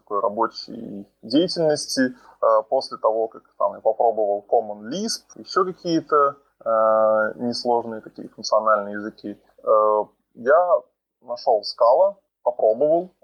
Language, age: Russian, 20-39